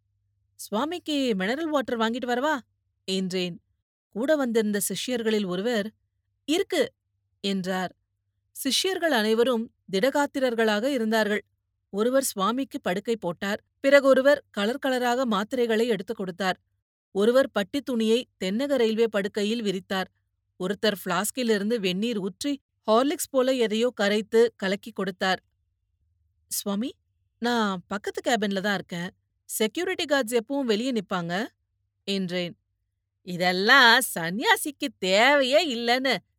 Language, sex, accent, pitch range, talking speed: Tamil, female, native, 180-250 Hz, 95 wpm